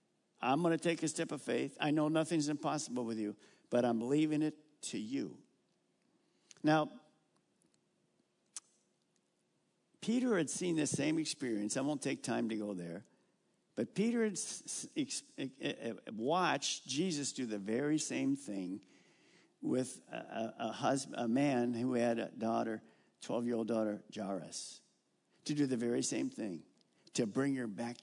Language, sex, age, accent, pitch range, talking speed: English, male, 50-69, American, 125-205 Hz, 140 wpm